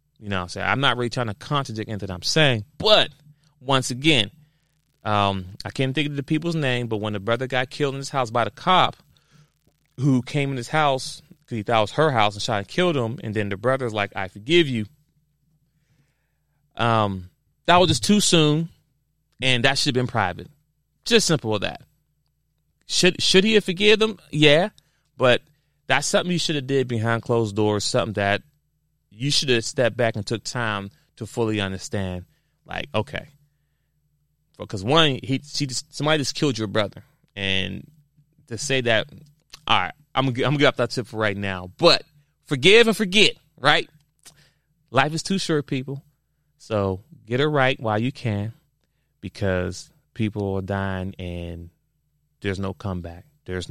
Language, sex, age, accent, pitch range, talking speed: English, male, 30-49, American, 105-150 Hz, 180 wpm